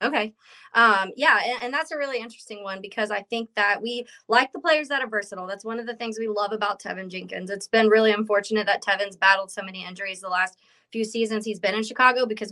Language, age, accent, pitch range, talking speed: English, 20-39, American, 200-230 Hz, 240 wpm